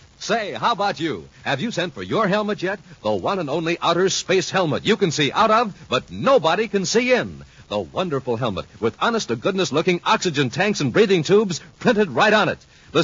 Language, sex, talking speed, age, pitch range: English, male, 200 wpm, 60-79, 155-220 Hz